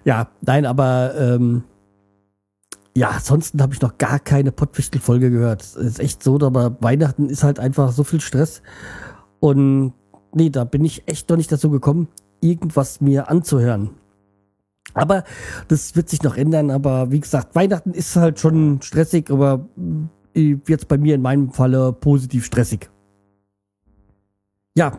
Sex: male